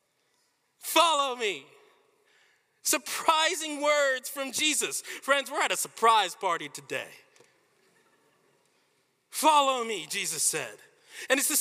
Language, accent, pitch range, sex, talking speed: English, American, 275-400 Hz, male, 105 wpm